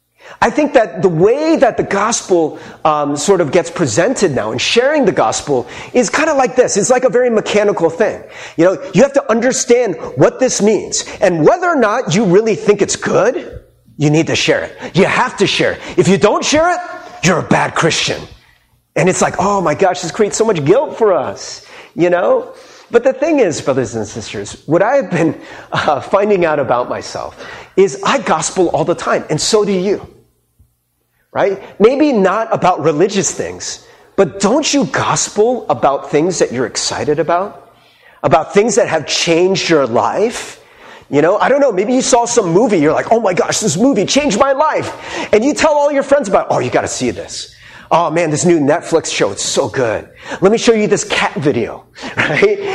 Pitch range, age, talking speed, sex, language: 170-275 Hz, 30-49, 205 wpm, male, English